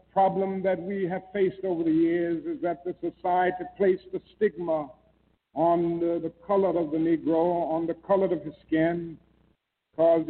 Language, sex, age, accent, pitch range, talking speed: English, male, 60-79, American, 170-195 Hz, 170 wpm